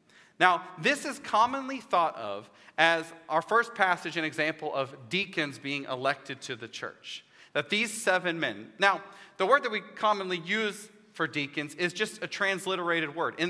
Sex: male